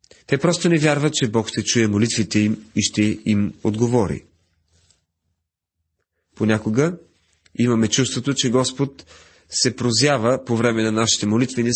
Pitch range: 105-135 Hz